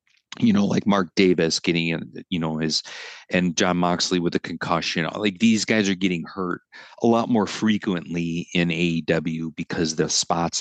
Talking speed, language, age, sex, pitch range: 170 wpm, English, 40-59, male, 80-100 Hz